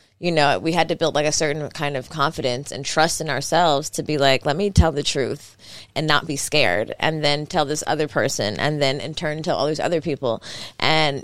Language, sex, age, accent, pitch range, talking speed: English, female, 20-39, American, 135-170 Hz, 235 wpm